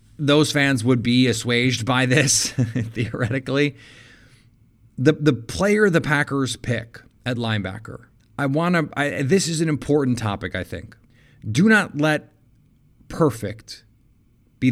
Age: 30-49